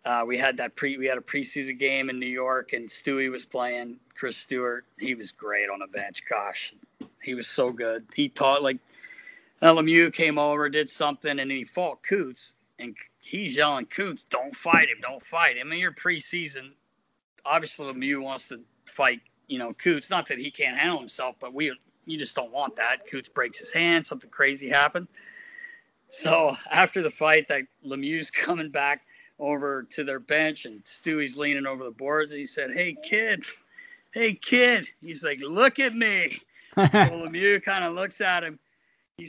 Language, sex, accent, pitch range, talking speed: English, male, American, 140-185 Hz, 190 wpm